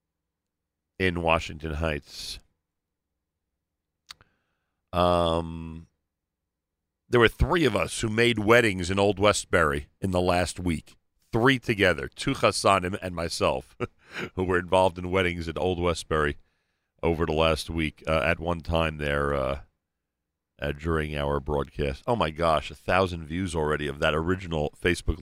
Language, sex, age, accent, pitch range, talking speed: English, male, 40-59, American, 80-105 Hz, 140 wpm